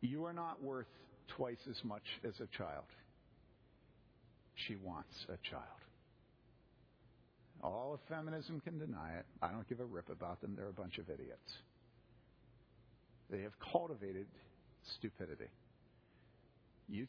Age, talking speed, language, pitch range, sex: 50-69, 130 wpm, English, 115-165 Hz, male